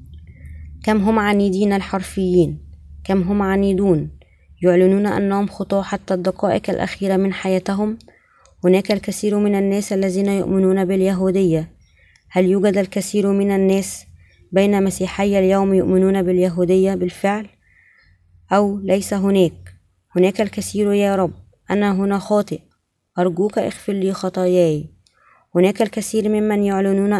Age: 20-39